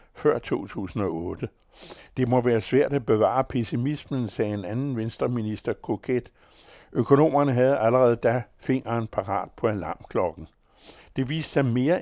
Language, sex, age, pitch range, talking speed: Danish, male, 60-79, 105-130 Hz, 130 wpm